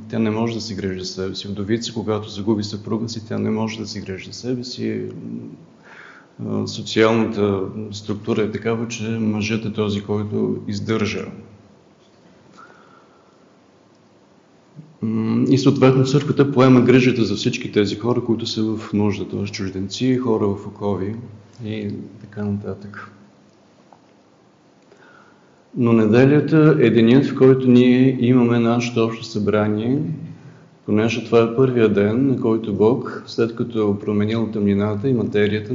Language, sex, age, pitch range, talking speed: Bulgarian, male, 40-59, 105-120 Hz, 135 wpm